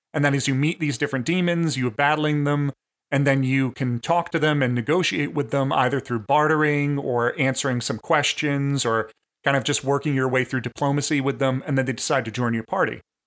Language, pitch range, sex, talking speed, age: English, 125-150 Hz, male, 215 wpm, 30-49